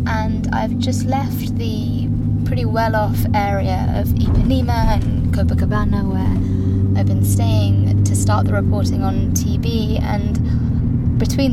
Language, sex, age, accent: English, female, 20-39, British